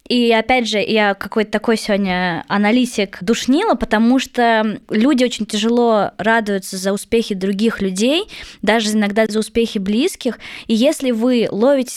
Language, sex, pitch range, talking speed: Russian, female, 205-245 Hz, 140 wpm